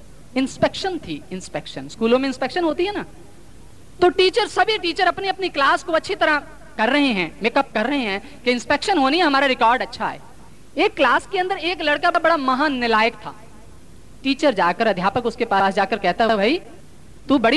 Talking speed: 75 wpm